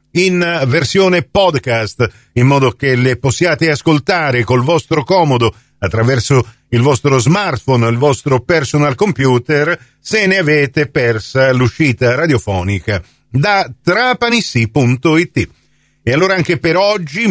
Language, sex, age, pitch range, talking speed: Italian, male, 50-69, 120-170 Hz, 115 wpm